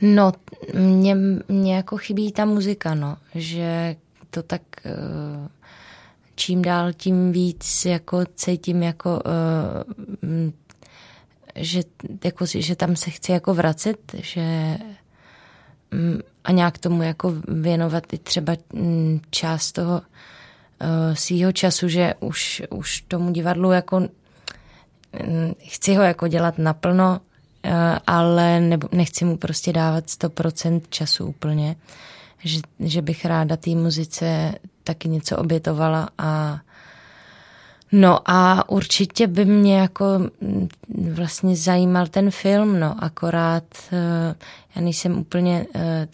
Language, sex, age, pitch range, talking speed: Czech, female, 20-39, 165-185 Hz, 110 wpm